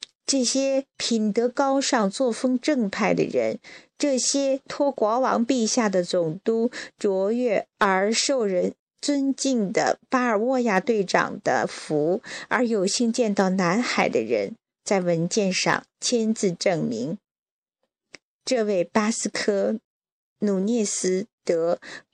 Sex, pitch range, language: female, 195-265 Hz, Chinese